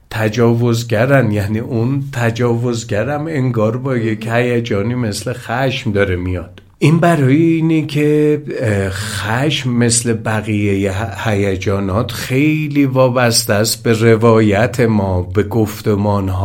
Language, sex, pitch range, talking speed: Persian, male, 100-125 Hz, 105 wpm